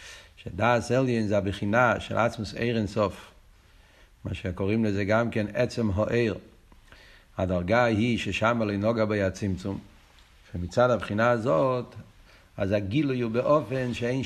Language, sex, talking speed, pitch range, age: Hebrew, male, 120 wpm, 100-125 Hz, 50-69